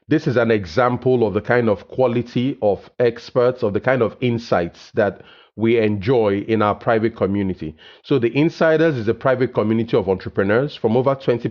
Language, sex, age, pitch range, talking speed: English, male, 30-49, 110-140 Hz, 180 wpm